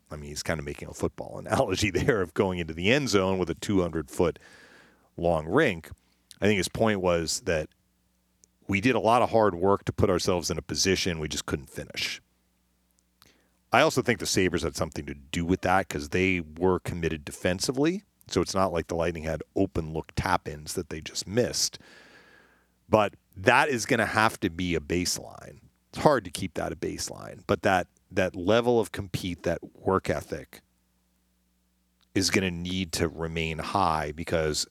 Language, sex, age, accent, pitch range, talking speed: English, male, 40-59, American, 75-90 Hz, 185 wpm